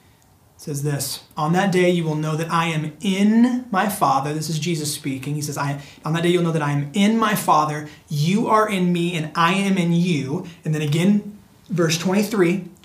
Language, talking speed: English, 220 wpm